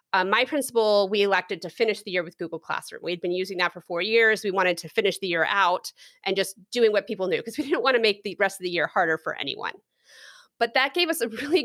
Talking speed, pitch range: 270 wpm, 180-225 Hz